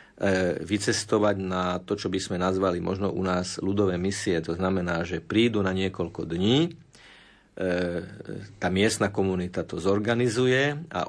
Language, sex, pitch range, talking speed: Slovak, male, 90-110 Hz, 135 wpm